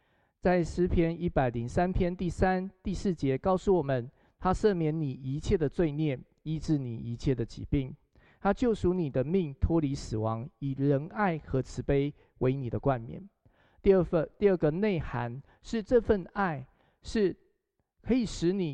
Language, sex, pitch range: Chinese, male, 135-185 Hz